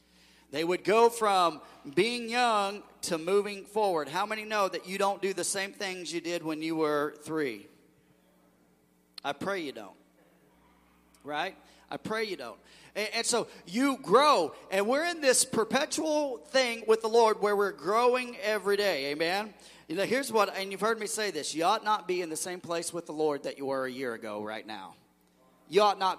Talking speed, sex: 195 wpm, male